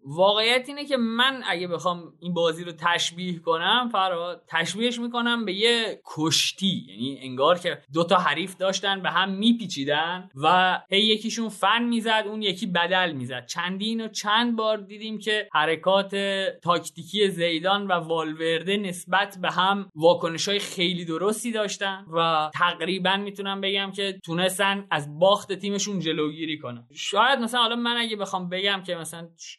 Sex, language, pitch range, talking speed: male, Persian, 160-200 Hz, 150 wpm